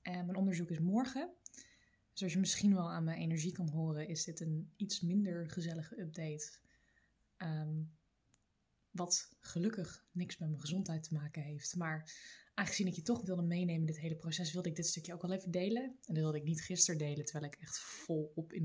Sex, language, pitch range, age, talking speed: female, Dutch, 160-190 Hz, 20-39, 205 wpm